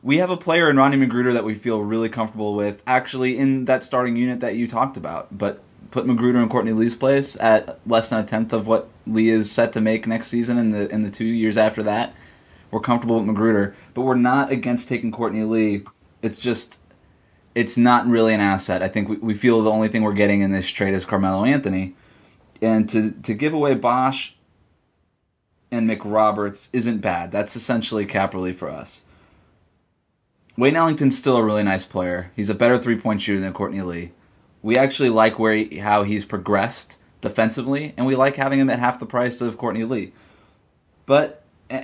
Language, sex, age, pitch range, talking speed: English, male, 20-39, 105-125 Hz, 195 wpm